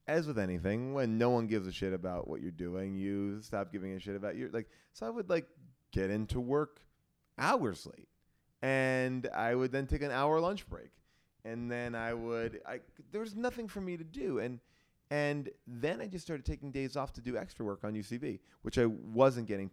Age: 30-49